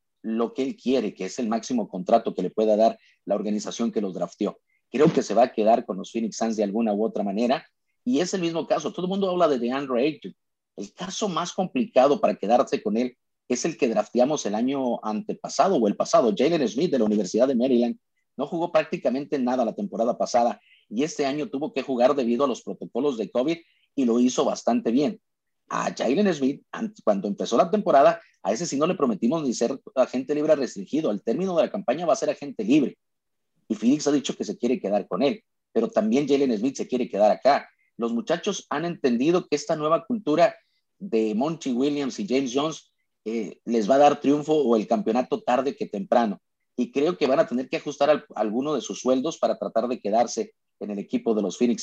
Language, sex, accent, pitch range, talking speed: Spanish, male, Mexican, 115-160 Hz, 220 wpm